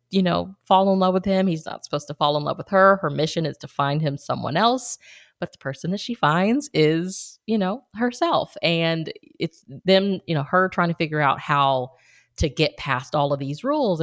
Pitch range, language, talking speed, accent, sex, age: 150-195 Hz, English, 225 wpm, American, female, 20-39